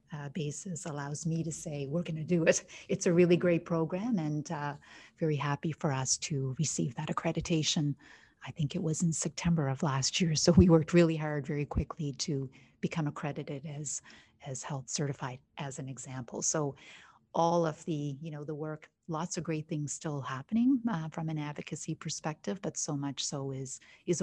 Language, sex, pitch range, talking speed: English, female, 145-165 Hz, 190 wpm